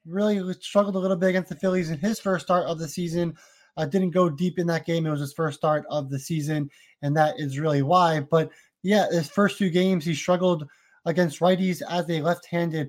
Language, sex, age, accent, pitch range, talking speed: English, male, 20-39, American, 160-185 Hz, 230 wpm